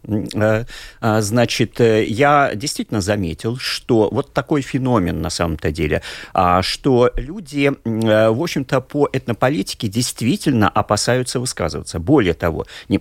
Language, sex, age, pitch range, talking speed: Russian, male, 40-59, 105-145 Hz, 105 wpm